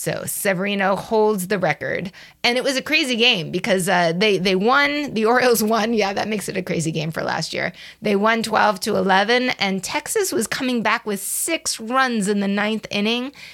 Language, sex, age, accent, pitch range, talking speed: English, female, 30-49, American, 190-250 Hz, 205 wpm